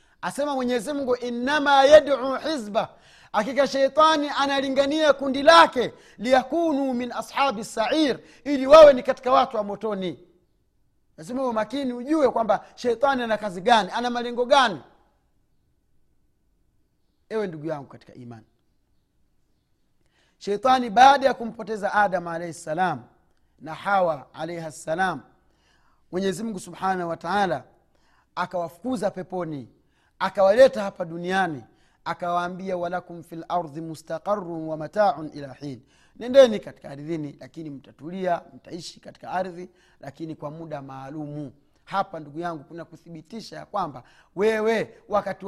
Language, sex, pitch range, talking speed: Swahili, male, 160-235 Hz, 115 wpm